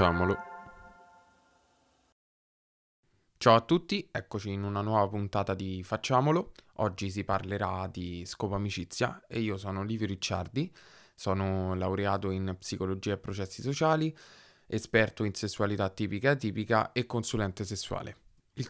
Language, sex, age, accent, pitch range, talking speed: Italian, male, 20-39, native, 95-115 Hz, 120 wpm